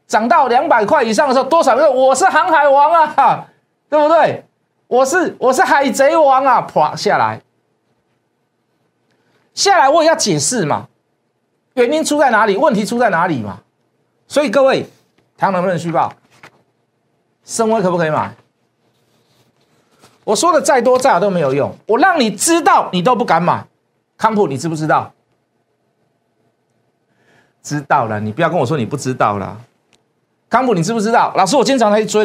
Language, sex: Chinese, male